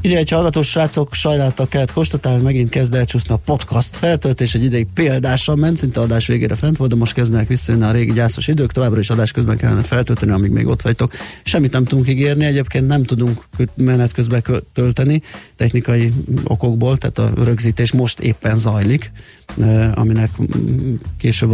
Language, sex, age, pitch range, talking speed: Hungarian, male, 30-49, 110-130 Hz, 165 wpm